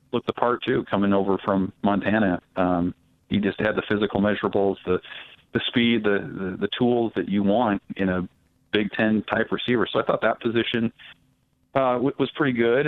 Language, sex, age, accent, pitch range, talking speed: English, male, 40-59, American, 100-115 Hz, 185 wpm